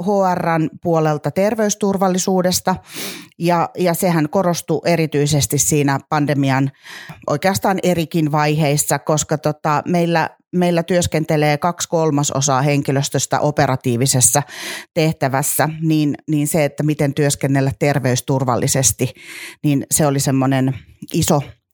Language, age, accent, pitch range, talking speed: Finnish, 30-49, native, 135-165 Hz, 95 wpm